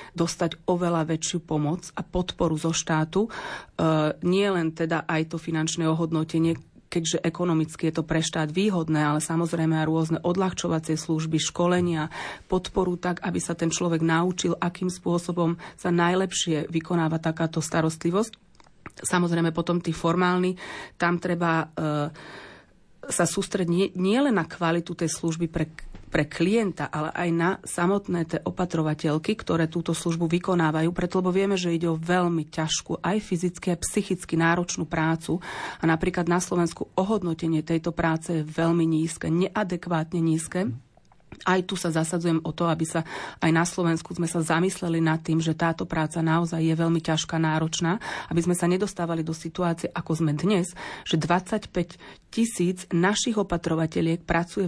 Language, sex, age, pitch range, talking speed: Slovak, female, 30-49, 160-180 Hz, 150 wpm